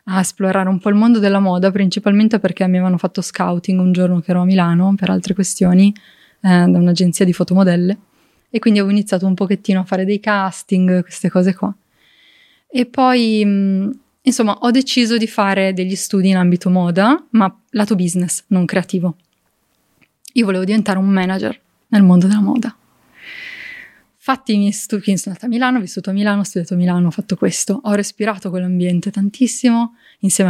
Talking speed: 180 wpm